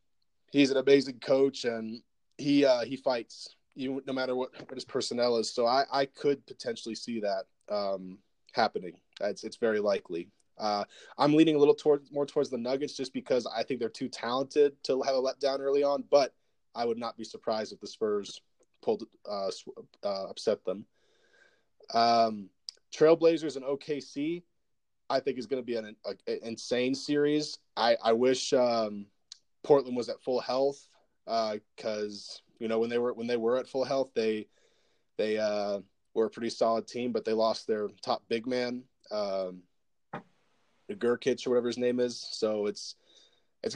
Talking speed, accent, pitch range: 175 wpm, American, 115-140 Hz